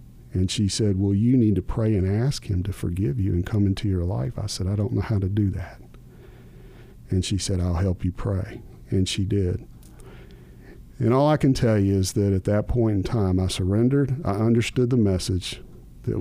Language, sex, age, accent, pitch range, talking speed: English, male, 40-59, American, 95-110 Hz, 215 wpm